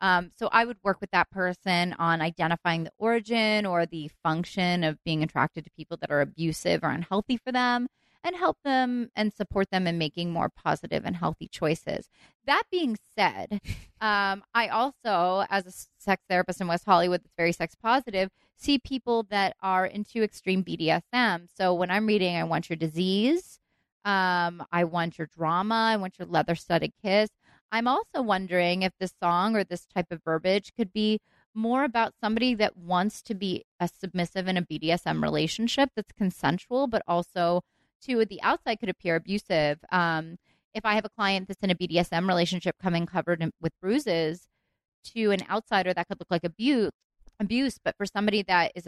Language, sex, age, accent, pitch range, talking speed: English, female, 20-39, American, 170-215 Hz, 180 wpm